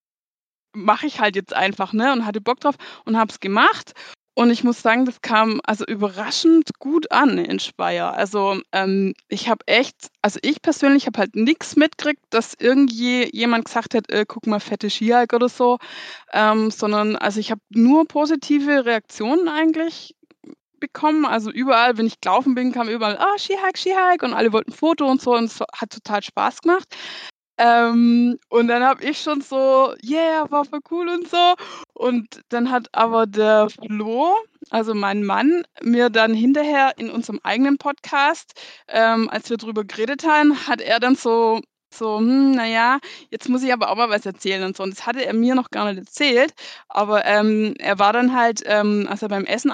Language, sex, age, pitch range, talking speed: German, female, 20-39, 220-290 Hz, 185 wpm